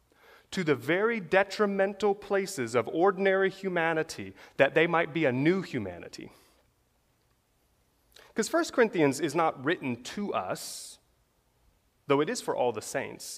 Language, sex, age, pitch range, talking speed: English, male, 30-49, 140-205 Hz, 135 wpm